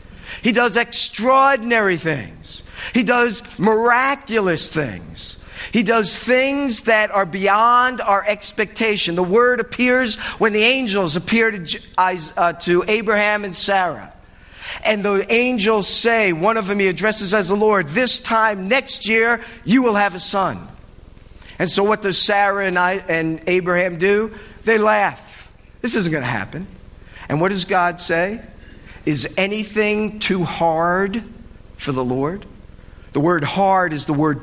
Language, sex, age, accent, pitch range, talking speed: English, male, 50-69, American, 170-230 Hz, 140 wpm